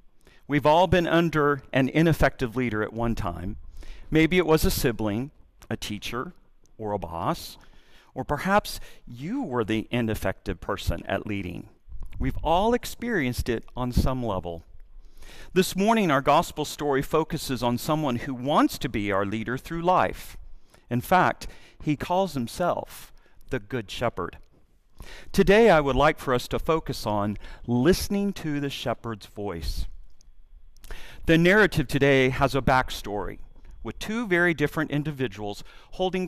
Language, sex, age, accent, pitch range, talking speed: English, male, 40-59, American, 105-165 Hz, 140 wpm